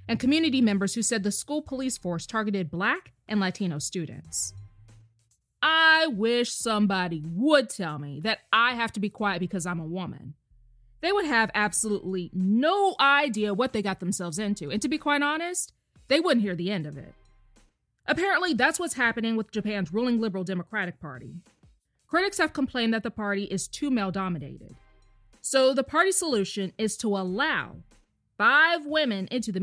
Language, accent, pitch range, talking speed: English, American, 180-270 Hz, 170 wpm